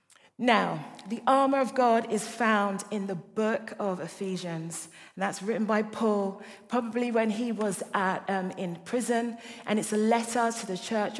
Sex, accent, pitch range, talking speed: female, British, 195-250 Hz, 170 wpm